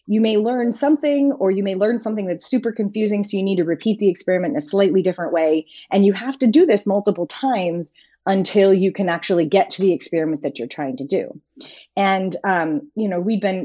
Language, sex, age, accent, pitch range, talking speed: English, female, 30-49, American, 170-245 Hz, 225 wpm